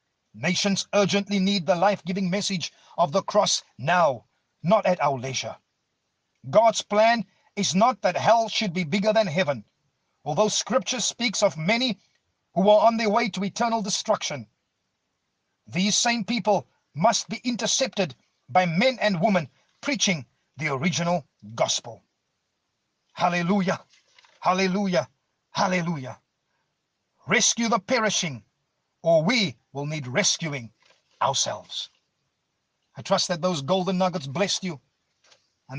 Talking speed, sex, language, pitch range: 120 wpm, male, English, 135-205 Hz